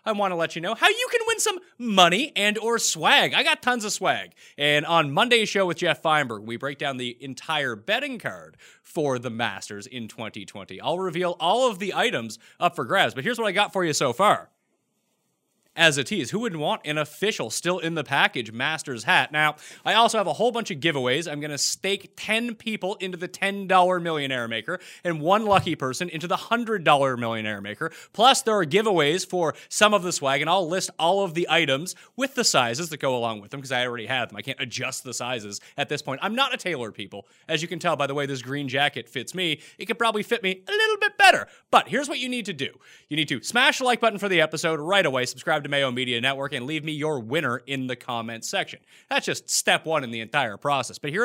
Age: 30-49